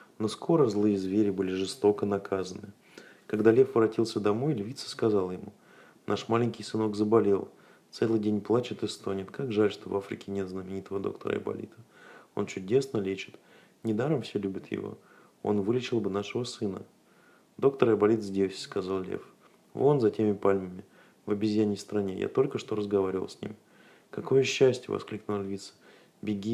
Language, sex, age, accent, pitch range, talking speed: Russian, male, 30-49, native, 100-115 Hz, 150 wpm